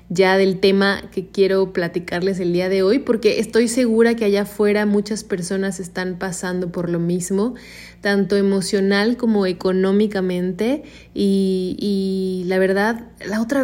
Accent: Mexican